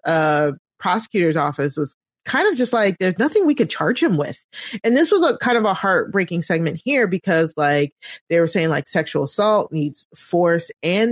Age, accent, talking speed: 30-49, American, 195 wpm